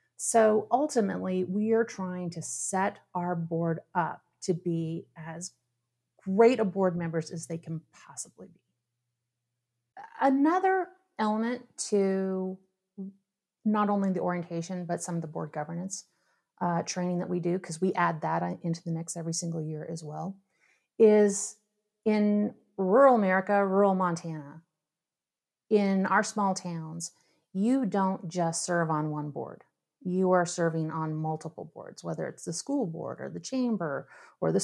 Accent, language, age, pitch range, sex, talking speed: American, English, 30-49, 170-210 Hz, female, 145 wpm